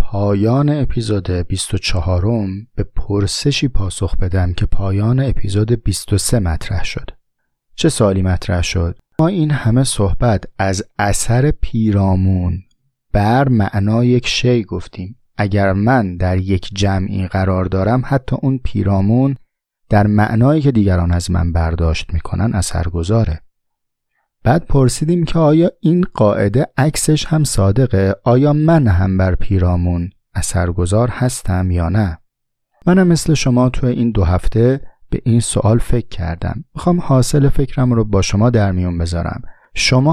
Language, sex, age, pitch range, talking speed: Persian, male, 30-49, 95-125 Hz, 135 wpm